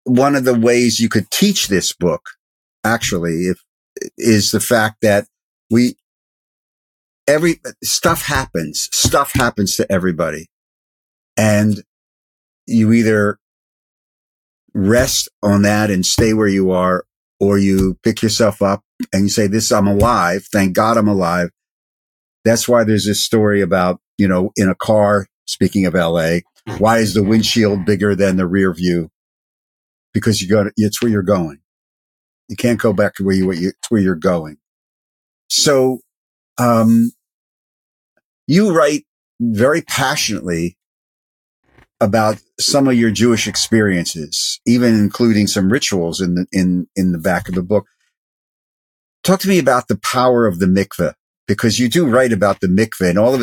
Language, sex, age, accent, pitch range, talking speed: English, male, 50-69, American, 95-115 Hz, 150 wpm